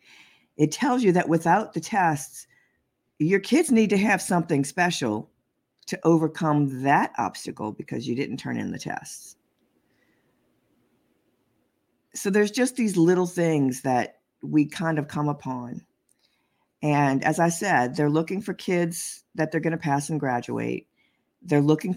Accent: American